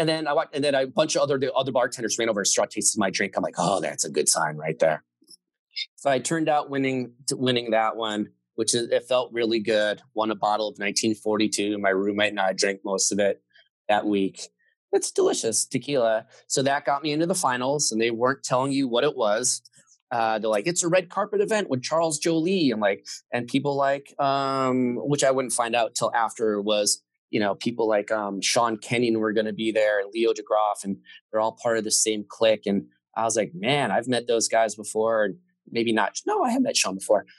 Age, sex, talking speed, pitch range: 30-49, male, 230 wpm, 110-145 Hz